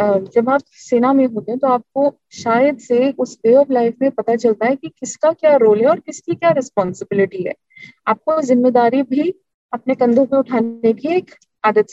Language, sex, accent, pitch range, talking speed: Hindi, female, native, 210-280 Hz, 170 wpm